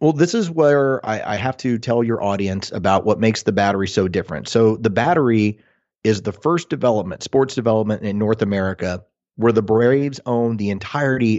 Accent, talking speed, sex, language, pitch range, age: American, 190 wpm, male, English, 105-130 Hz, 30-49